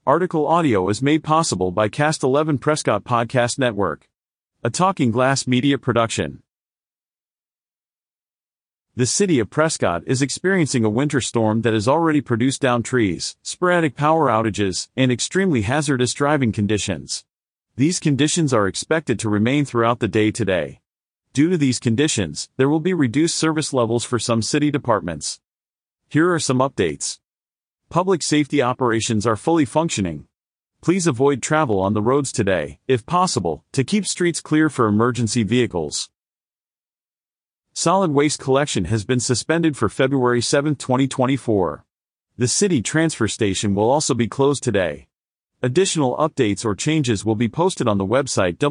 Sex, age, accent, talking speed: male, 40-59, American, 145 wpm